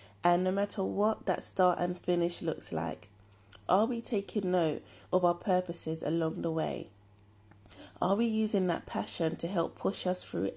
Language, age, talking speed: English, 30-49, 170 wpm